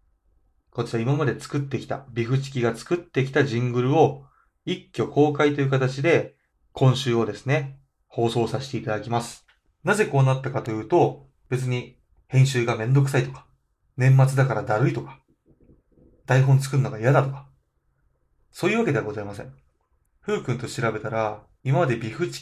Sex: male